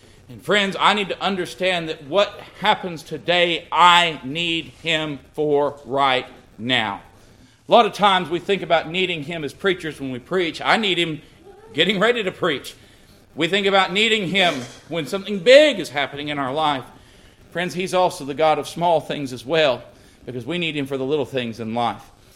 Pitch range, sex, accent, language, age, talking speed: 120-170 Hz, male, American, English, 40-59, 190 wpm